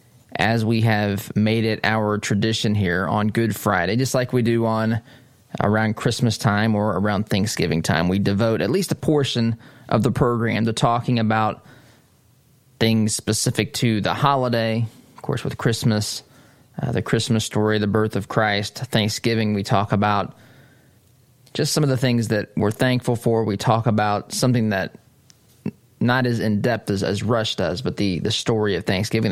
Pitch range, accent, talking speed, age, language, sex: 105-125 Hz, American, 170 wpm, 20-39, English, male